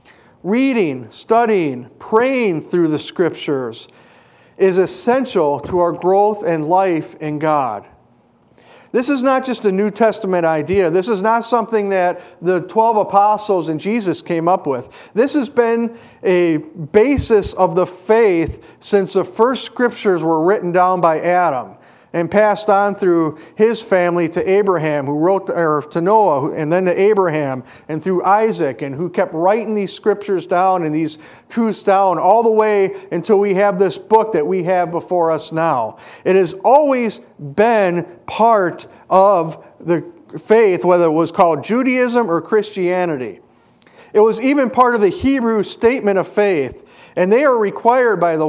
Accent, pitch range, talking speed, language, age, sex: American, 170-220 Hz, 160 wpm, English, 50-69, male